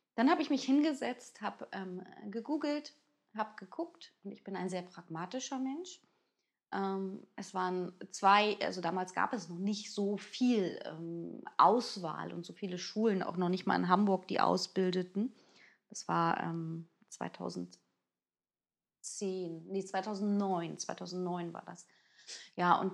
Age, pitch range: 20-39, 175-225 Hz